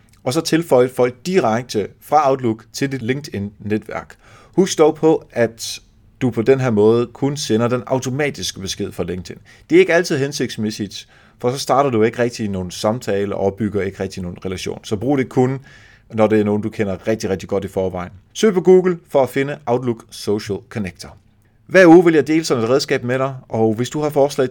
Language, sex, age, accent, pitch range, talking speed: Danish, male, 30-49, native, 100-135 Hz, 205 wpm